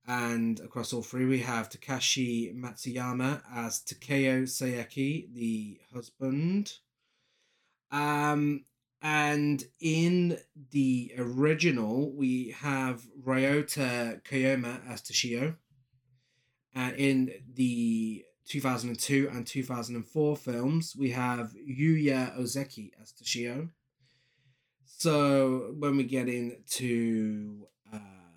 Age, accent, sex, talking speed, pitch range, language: 20-39, British, male, 95 wpm, 120-140 Hz, English